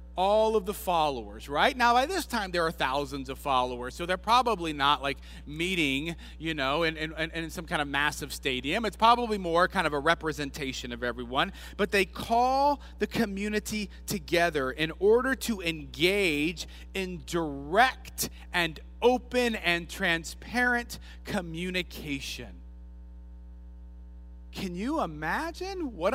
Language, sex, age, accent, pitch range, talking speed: English, male, 40-59, American, 145-230 Hz, 140 wpm